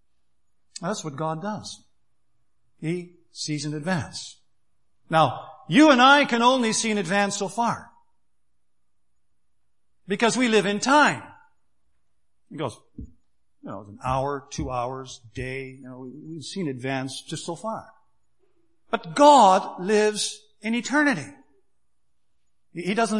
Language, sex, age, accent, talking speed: English, male, 60-79, American, 125 wpm